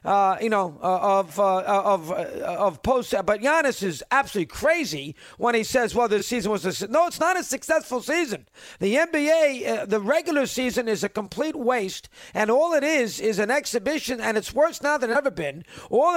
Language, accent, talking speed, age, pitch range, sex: English, American, 210 wpm, 50-69, 215-270 Hz, male